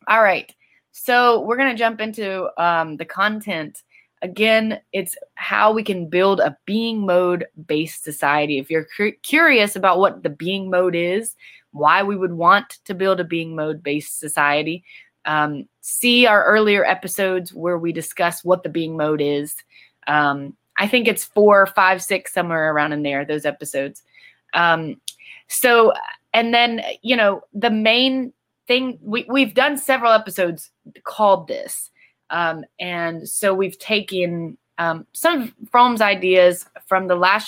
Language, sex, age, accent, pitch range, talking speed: English, female, 20-39, American, 160-215 Hz, 155 wpm